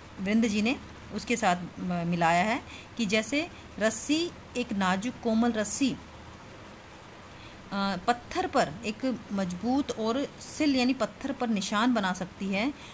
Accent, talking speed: native, 120 wpm